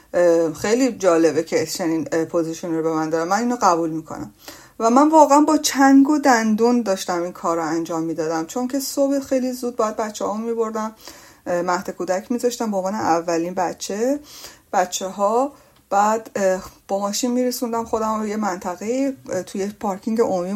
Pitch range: 185-255 Hz